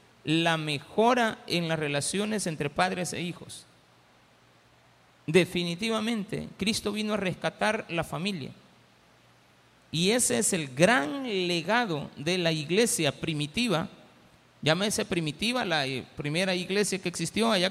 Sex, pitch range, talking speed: male, 150-210 Hz, 115 wpm